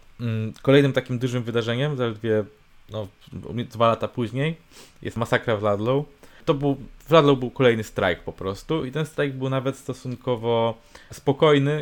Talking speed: 135 wpm